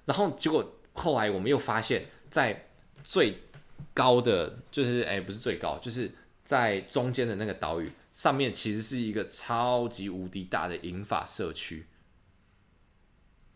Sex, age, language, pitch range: male, 20-39, Chinese, 95-125 Hz